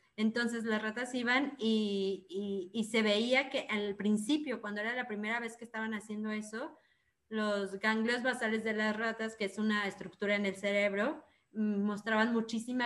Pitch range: 200-235 Hz